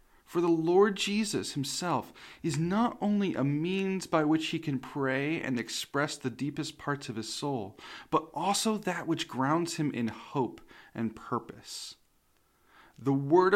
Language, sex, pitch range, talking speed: English, male, 130-170 Hz, 155 wpm